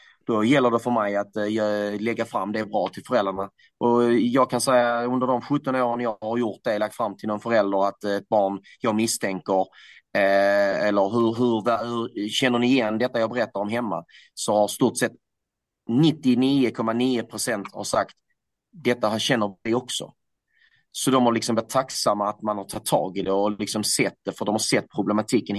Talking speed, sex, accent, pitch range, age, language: 180 wpm, male, native, 105-130 Hz, 30-49, Swedish